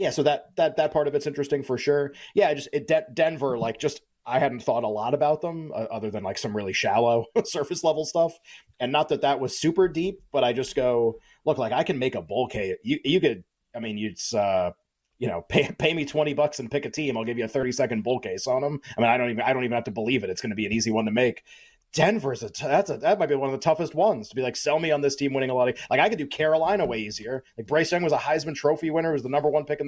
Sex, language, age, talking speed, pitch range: male, English, 30-49, 300 wpm, 125-160 Hz